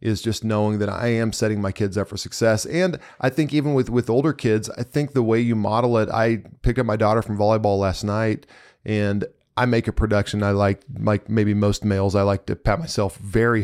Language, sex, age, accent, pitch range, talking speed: English, male, 20-39, American, 105-125 Hz, 235 wpm